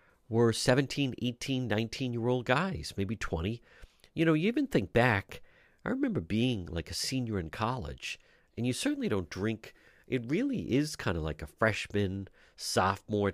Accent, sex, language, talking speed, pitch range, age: American, male, English, 165 wpm, 85-125 Hz, 50-69